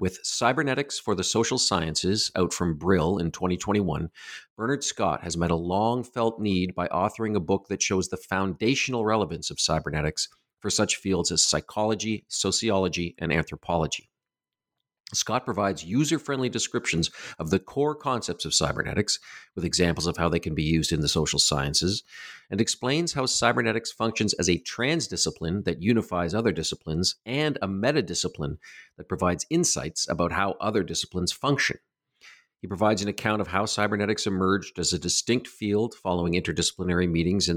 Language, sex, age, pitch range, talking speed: English, male, 50-69, 85-110 Hz, 160 wpm